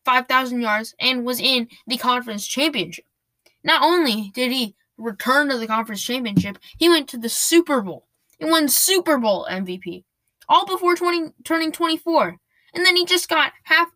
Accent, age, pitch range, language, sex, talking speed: American, 10-29, 190-275 Hz, English, female, 170 wpm